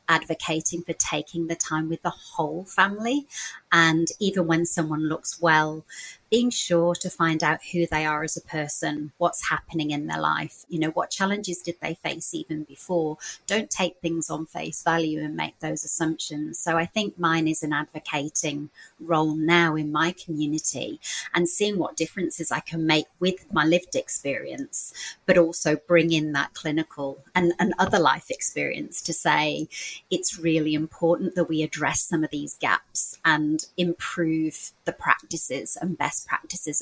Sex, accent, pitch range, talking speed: female, British, 155-175 Hz, 170 wpm